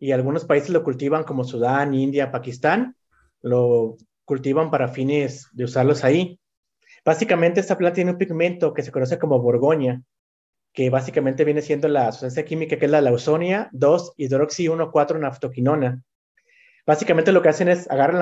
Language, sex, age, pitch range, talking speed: Spanish, male, 30-49, 135-170 Hz, 160 wpm